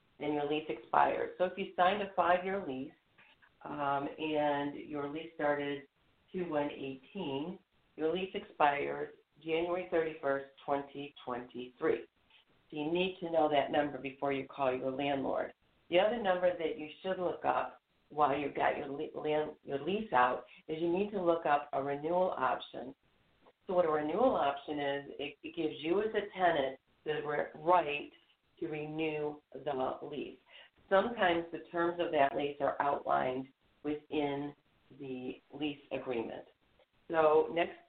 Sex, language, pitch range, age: female, English, 140-170 Hz, 50-69